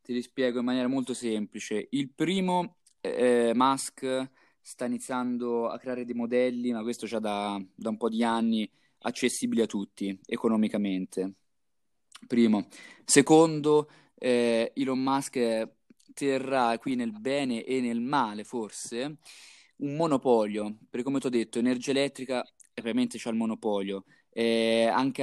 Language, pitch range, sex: Italian, 110-135 Hz, male